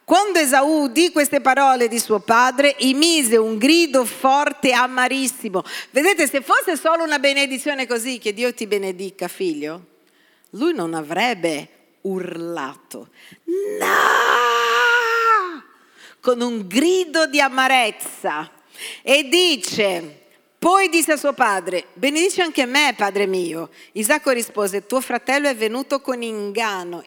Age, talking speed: 40-59, 125 wpm